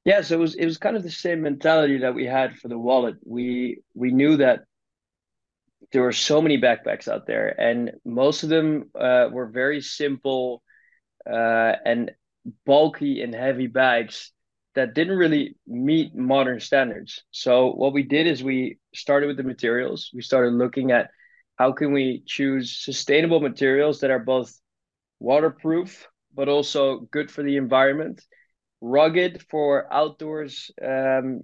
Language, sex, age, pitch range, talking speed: English, male, 20-39, 125-145 Hz, 155 wpm